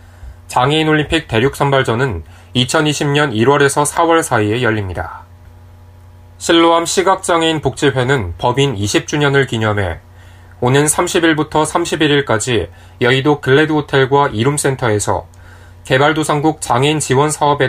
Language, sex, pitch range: Korean, male, 95-150 Hz